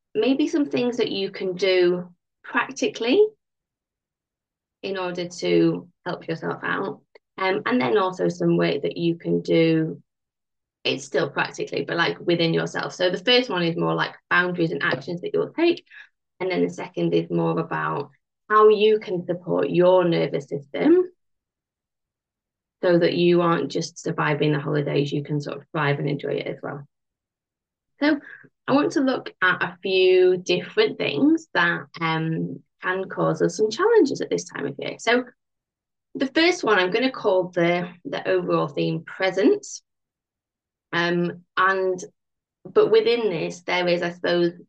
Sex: female